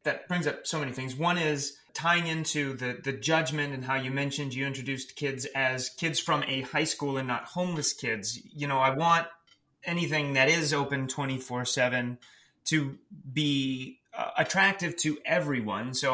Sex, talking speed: male, 170 wpm